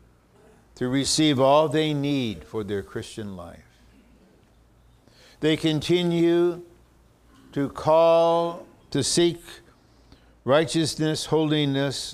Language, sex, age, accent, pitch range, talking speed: English, male, 60-79, American, 110-140 Hz, 85 wpm